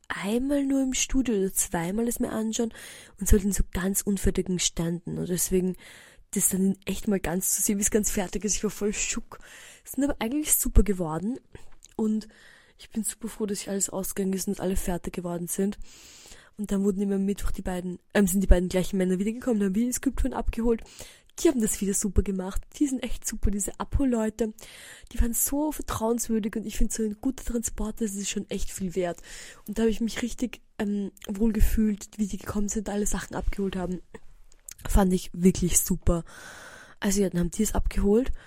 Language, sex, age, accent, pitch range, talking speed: German, female, 20-39, German, 185-225 Hz, 205 wpm